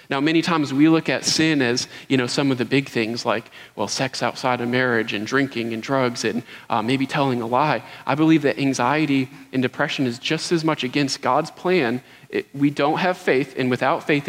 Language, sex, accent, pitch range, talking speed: English, male, American, 130-165 Hz, 220 wpm